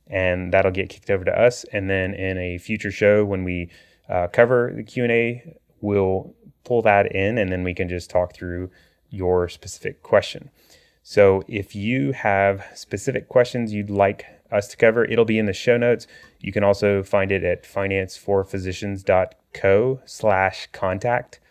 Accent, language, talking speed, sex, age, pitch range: American, English, 160 wpm, male, 30-49, 90-110 Hz